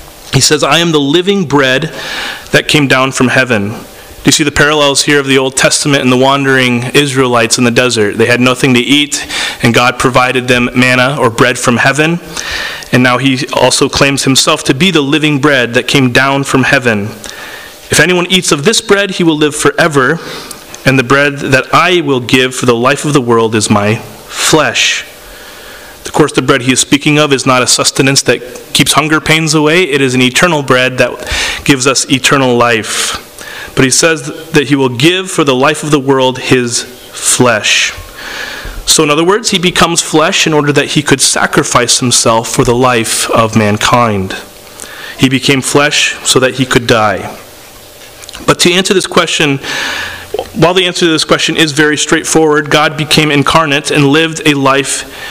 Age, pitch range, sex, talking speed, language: 30-49, 125-155 Hz, male, 190 wpm, English